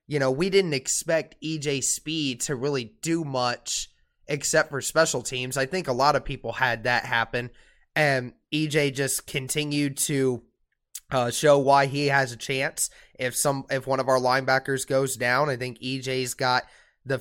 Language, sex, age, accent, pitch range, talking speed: English, male, 20-39, American, 130-145 Hz, 170 wpm